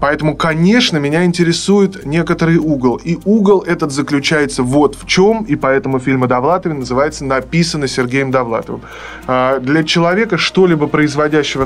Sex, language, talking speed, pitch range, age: male, Russian, 130 wpm, 130-175 Hz, 20-39